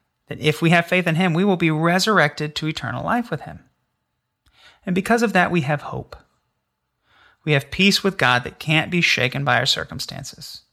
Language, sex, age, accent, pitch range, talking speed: English, male, 30-49, American, 135-175 Hz, 195 wpm